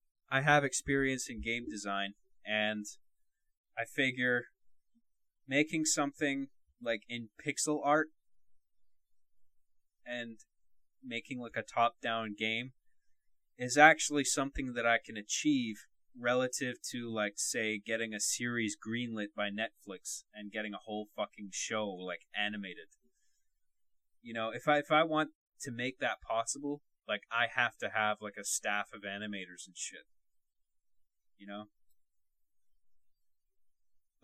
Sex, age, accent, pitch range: male, 20-39, American, 100-130 Hz